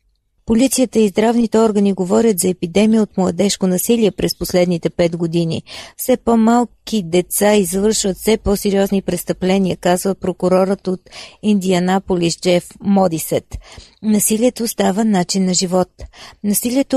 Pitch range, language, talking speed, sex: 180-215 Hz, Bulgarian, 115 wpm, female